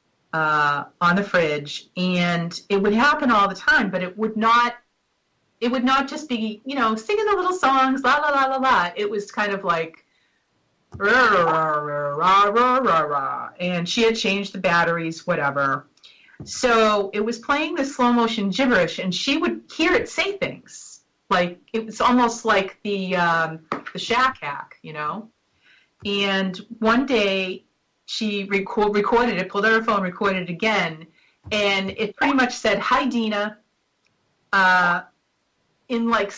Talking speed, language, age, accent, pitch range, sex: 170 wpm, English, 40-59, American, 185-240 Hz, female